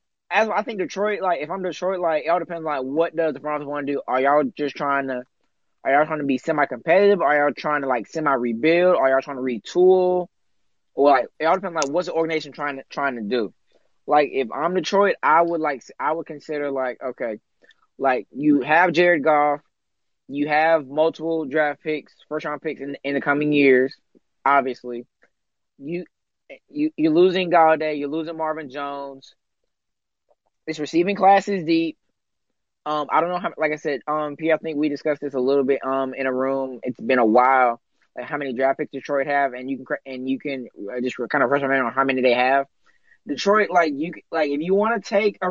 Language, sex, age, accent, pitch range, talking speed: English, male, 20-39, American, 135-165 Hz, 215 wpm